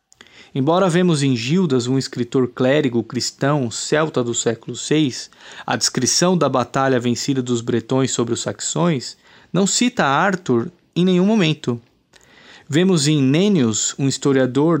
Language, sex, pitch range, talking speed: Portuguese, male, 125-165 Hz, 135 wpm